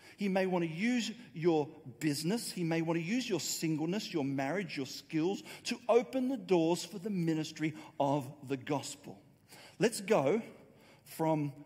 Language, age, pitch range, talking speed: English, 40-59, 145-205 Hz, 160 wpm